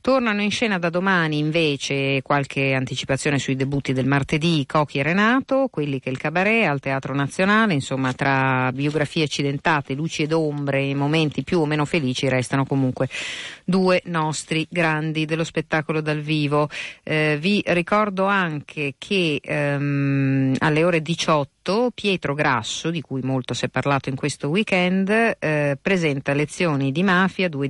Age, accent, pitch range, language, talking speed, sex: 50-69, native, 135-170 Hz, Italian, 150 wpm, female